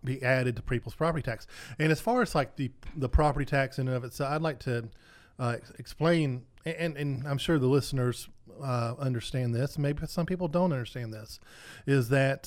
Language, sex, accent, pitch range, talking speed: English, male, American, 125-150 Hz, 200 wpm